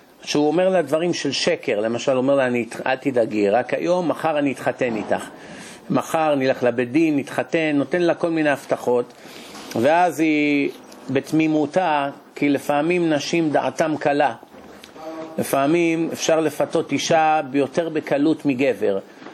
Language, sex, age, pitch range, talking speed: Hebrew, male, 50-69, 130-165 Hz, 135 wpm